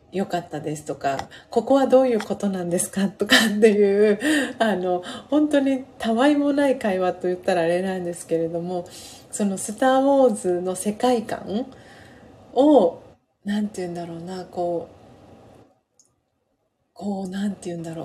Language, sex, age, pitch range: Japanese, female, 40-59, 170-225 Hz